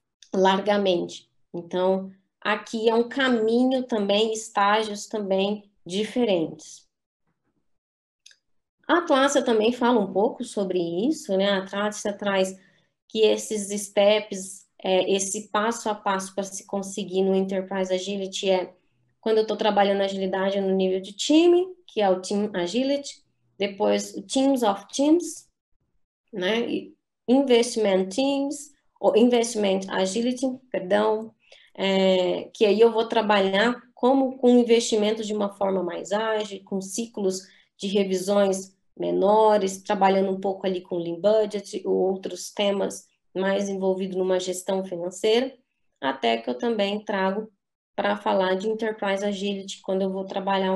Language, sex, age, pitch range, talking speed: Portuguese, female, 20-39, 190-225 Hz, 130 wpm